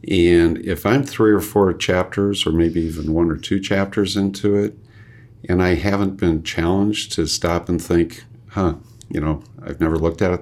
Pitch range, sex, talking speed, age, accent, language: 80-105 Hz, male, 190 wpm, 50-69, American, English